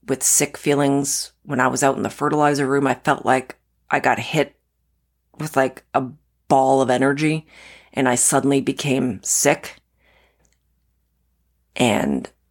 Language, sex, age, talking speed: English, female, 40-59, 140 wpm